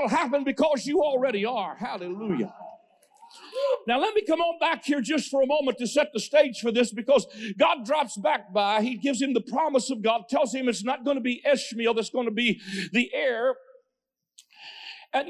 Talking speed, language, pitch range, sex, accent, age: 195 wpm, English, 245-320 Hz, male, American, 50-69